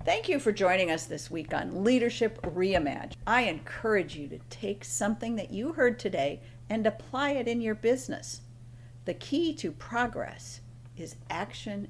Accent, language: American, English